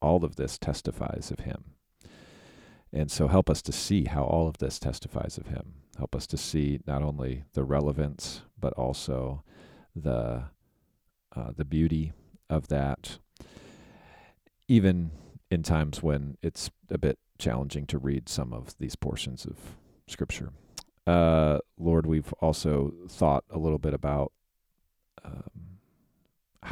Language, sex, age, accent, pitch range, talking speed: English, male, 40-59, American, 70-80 Hz, 135 wpm